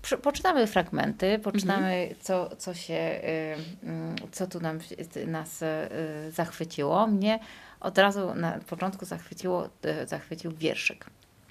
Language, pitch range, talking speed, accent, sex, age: Polish, 160-195 Hz, 80 wpm, native, female, 30-49